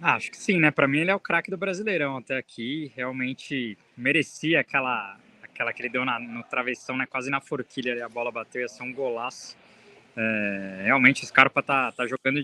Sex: male